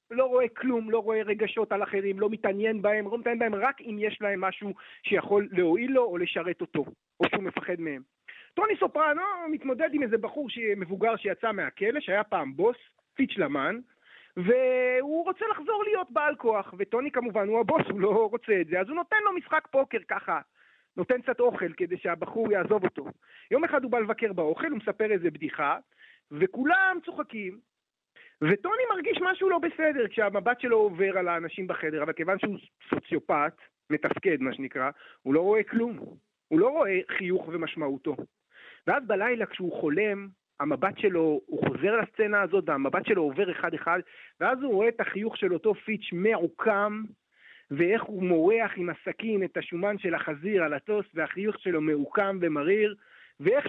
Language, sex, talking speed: Hebrew, male, 170 wpm